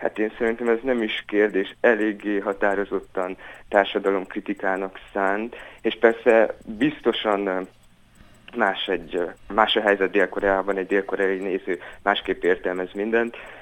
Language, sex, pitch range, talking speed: Hungarian, male, 100-115 Hz, 115 wpm